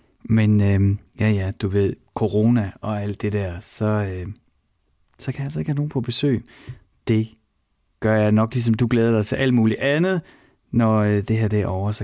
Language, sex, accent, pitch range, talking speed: Danish, male, native, 95-125 Hz, 200 wpm